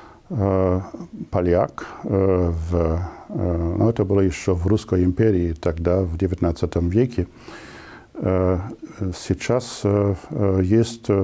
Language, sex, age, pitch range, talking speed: Russian, male, 50-69, 95-110 Hz, 80 wpm